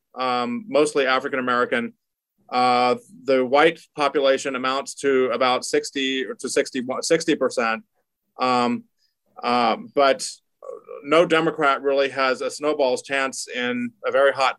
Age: 30-49